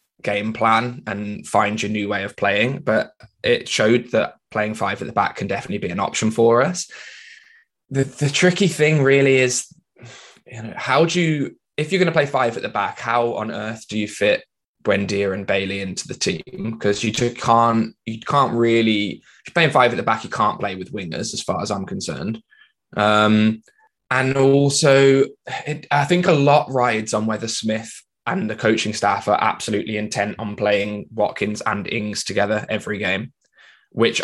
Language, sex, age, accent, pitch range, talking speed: English, male, 10-29, British, 105-130 Hz, 190 wpm